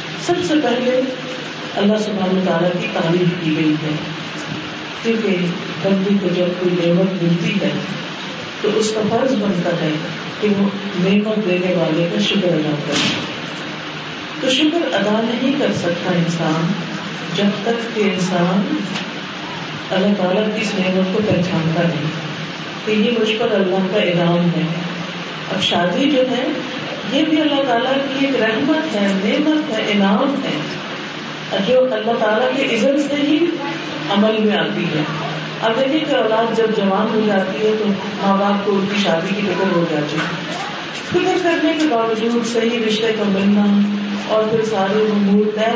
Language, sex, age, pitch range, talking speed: Urdu, female, 40-59, 180-230 Hz, 150 wpm